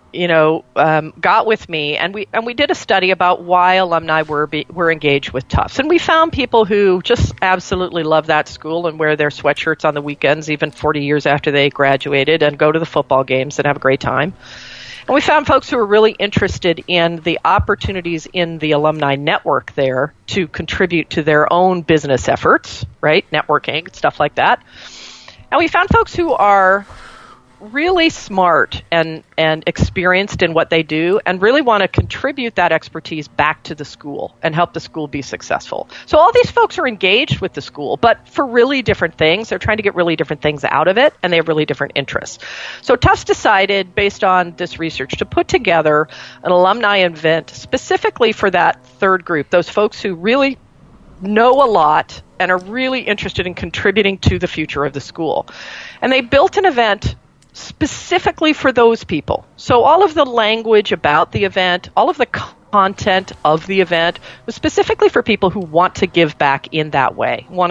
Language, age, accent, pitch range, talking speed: English, 40-59, American, 155-210 Hz, 195 wpm